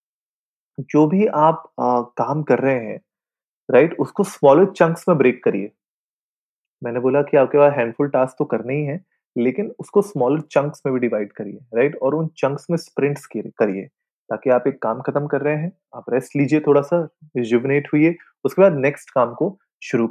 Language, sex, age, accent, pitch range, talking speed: Hindi, male, 30-49, native, 125-160 Hz, 180 wpm